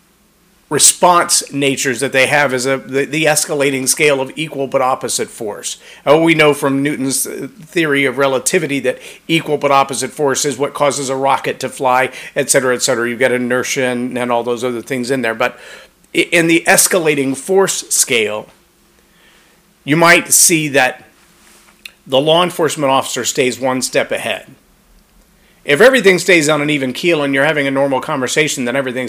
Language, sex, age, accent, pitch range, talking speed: English, male, 40-59, American, 135-175 Hz, 170 wpm